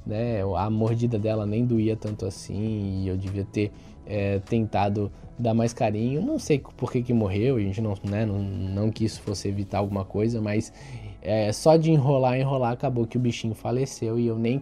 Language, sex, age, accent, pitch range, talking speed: Portuguese, male, 20-39, Brazilian, 110-145 Hz, 195 wpm